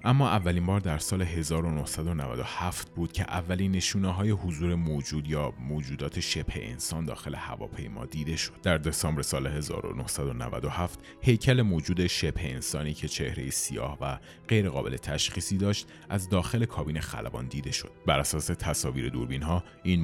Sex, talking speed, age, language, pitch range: male, 140 wpm, 30-49, Persian, 75-100 Hz